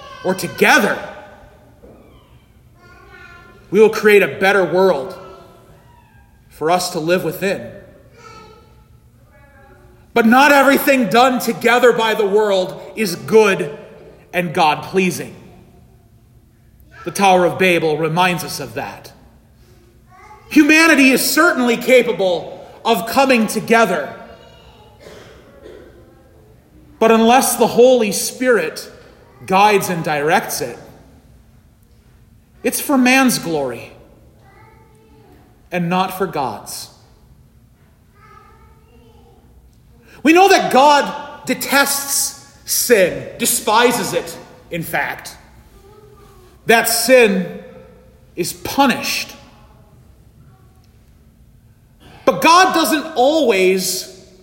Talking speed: 85 wpm